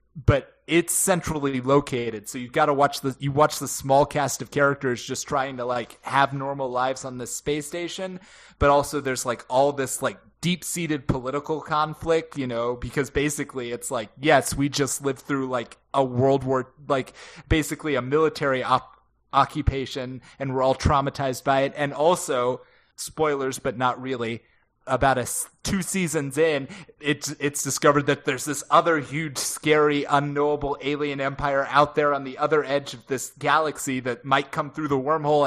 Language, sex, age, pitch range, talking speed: English, male, 20-39, 130-150 Hz, 175 wpm